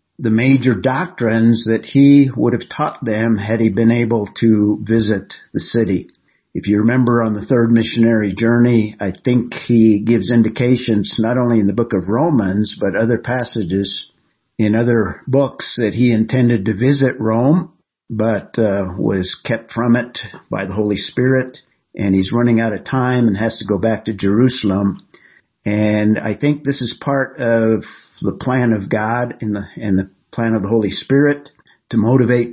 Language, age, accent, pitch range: English, 50-69, American, 105-125 Hz